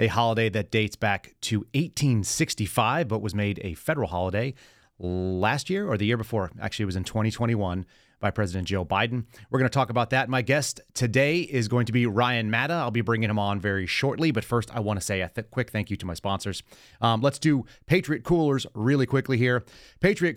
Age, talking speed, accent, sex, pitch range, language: 30-49, 210 wpm, American, male, 105-130 Hz, English